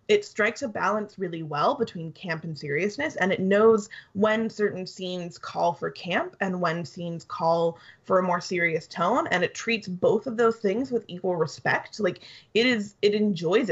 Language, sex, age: English, female, 20-39